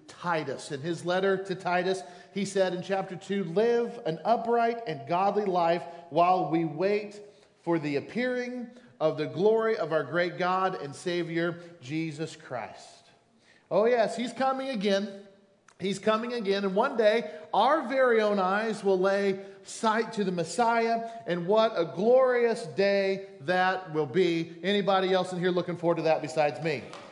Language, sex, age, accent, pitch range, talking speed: English, male, 40-59, American, 175-220 Hz, 160 wpm